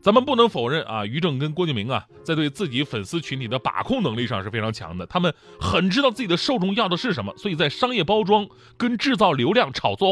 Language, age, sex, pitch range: Chinese, 30-49, male, 130-210 Hz